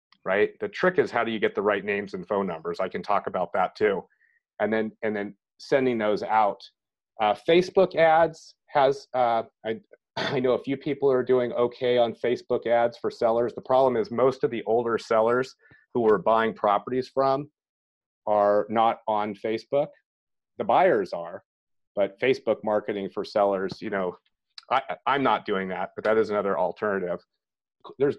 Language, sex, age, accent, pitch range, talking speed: English, male, 30-49, American, 100-135 Hz, 180 wpm